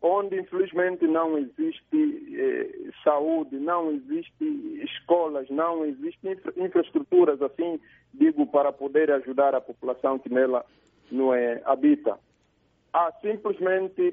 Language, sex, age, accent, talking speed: Portuguese, male, 50-69, Brazilian, 115 wpm